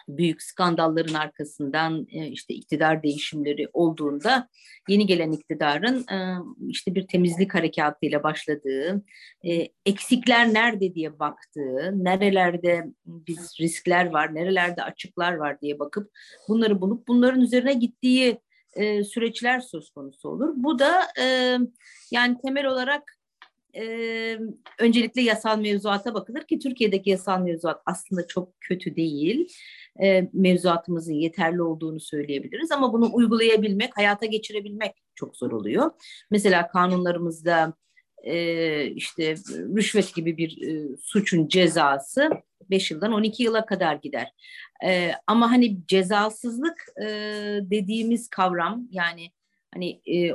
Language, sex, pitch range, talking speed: Turkish, female, 165-230 Hz, 110 wpm